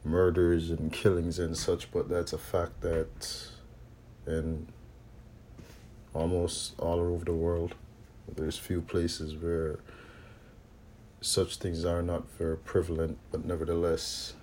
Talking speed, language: 115 wpm, English